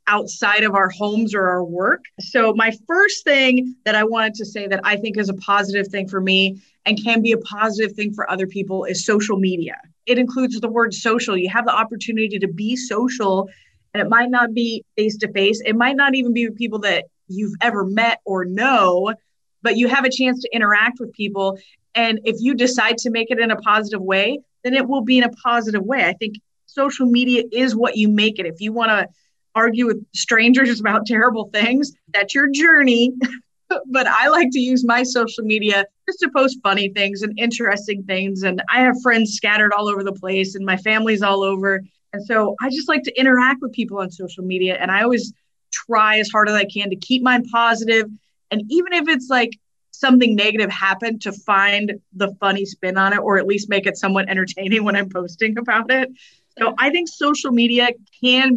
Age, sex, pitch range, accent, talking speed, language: 30-49, female, 200-245 Hz, American, 210 wpm, English